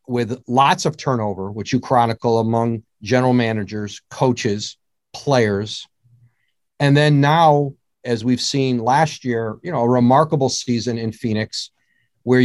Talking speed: 135 wpm